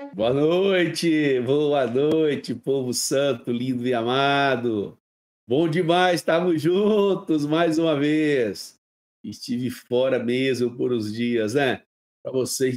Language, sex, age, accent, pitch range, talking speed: Portuguese, male, 50-69, Brazilian, 125-150 Hz, 115 wpm